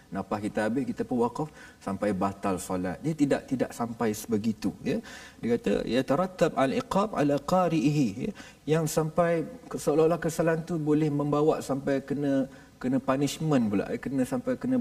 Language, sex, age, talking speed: Malayalam, male, 50-69, 160 wpm